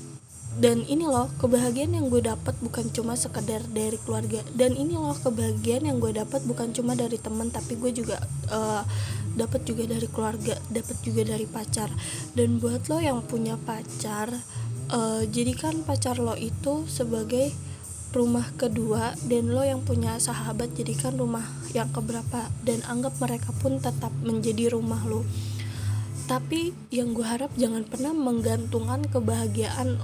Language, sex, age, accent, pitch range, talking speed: Indonesian, female, 20-39, native, 110-170 Hz, 150 wpm